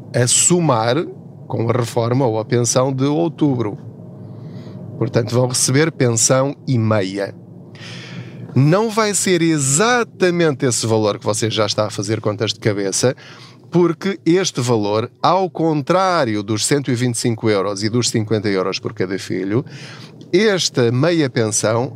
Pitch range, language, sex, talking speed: 115-150 Hz, Portuguese, male, 135 wpm